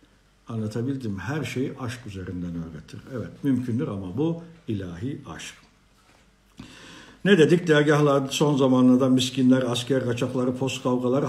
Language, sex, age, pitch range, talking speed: Turkish, male, 60-79, 110-135 Hz, 115 wpm